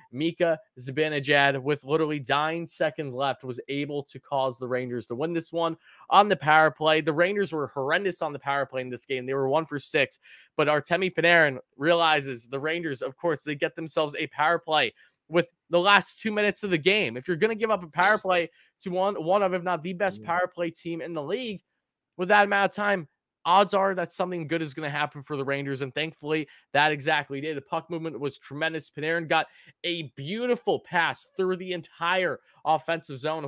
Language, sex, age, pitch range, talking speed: English, male, 20-39, 145-175 Hz, 215 wpm